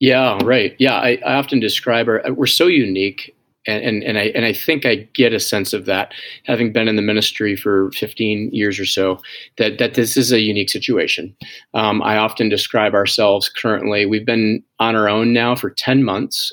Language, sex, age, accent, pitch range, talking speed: English, male, 30-49, American, 105-130 Hz, 205 wpm